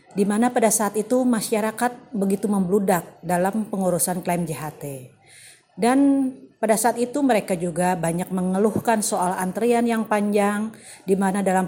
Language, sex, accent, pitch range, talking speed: Indonesian, female, native, 180-230 Hz, 140 wpm